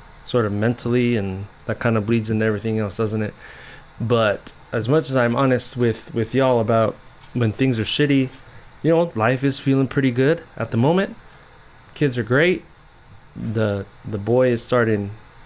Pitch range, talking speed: 105-130 Hz, 175 wpm